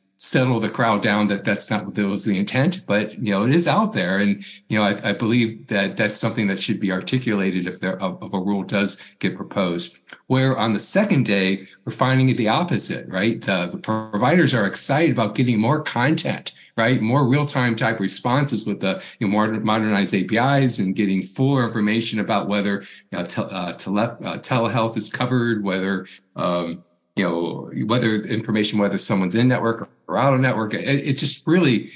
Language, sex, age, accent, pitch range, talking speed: English, male, 50-69, American, 100-125 Hz, 180 wpm